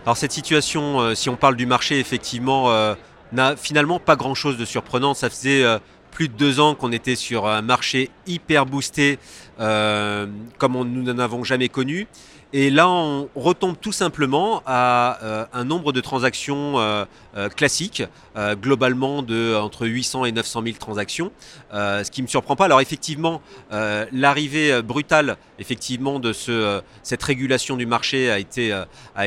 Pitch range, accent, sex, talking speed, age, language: 110-140 Hz, French, male, 155 wpm, 40-59, French